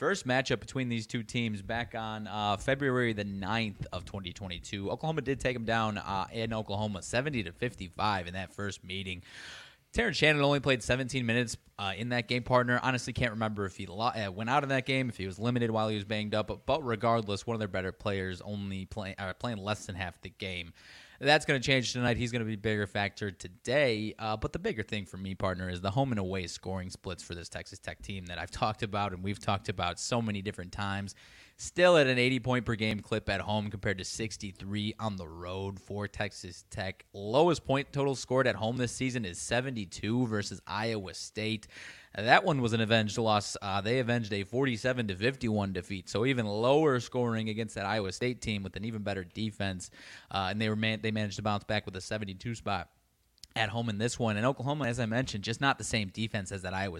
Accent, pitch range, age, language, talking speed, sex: American, 100-120 Hz, 20-39, English, 225 wpm, male